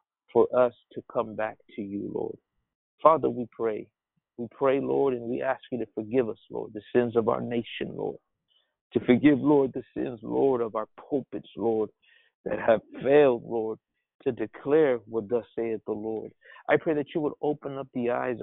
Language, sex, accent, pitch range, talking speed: English, male, American, 110-135 Hz, 190 wpm